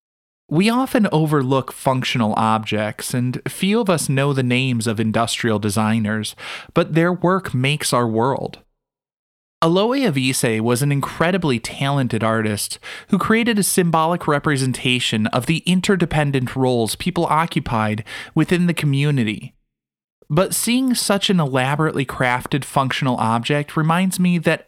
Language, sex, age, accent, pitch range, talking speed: English, male, 20-39, American, 125-180 Hz, 130 wpm